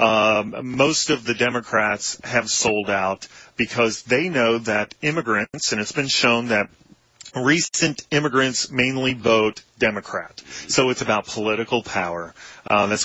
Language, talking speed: English, 145 wpm